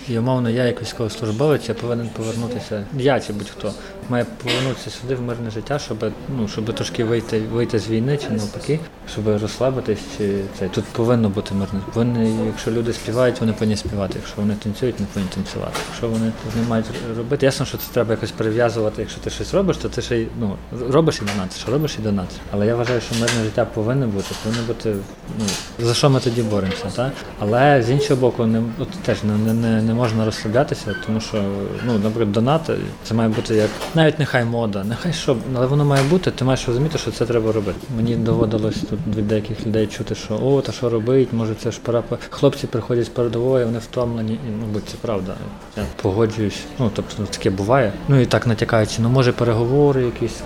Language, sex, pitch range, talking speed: Ukrainian, male, 110-125 Hz, 200 wpm